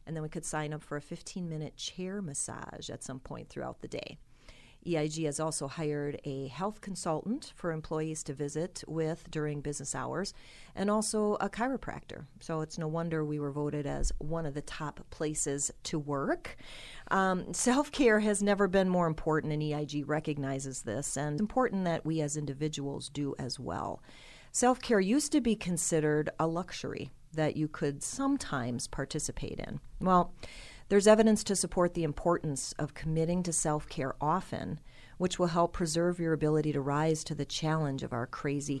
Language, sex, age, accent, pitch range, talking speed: English, female, 40-59, American, 145-180 Hz, 175 wpm